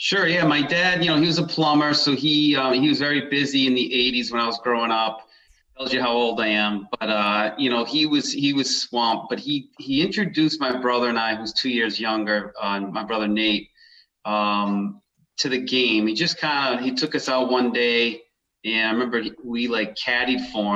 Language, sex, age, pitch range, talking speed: English, male, 30-49, 105-130 Hz, 225 wpm